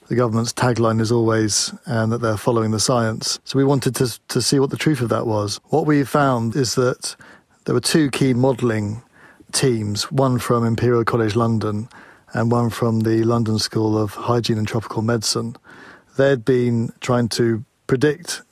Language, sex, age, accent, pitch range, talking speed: English, male, 40-59, British, 110-130 Hz, 180 wpm